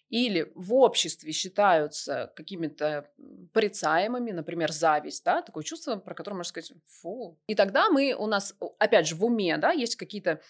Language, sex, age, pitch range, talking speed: Russian, female, 20-39, 175-240 Hz, 160 wpm